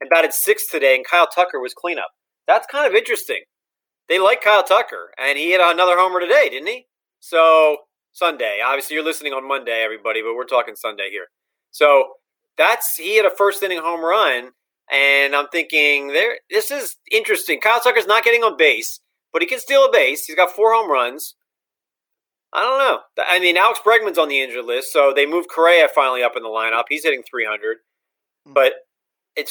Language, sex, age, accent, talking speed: English, male, 30-49, American, 195 wpm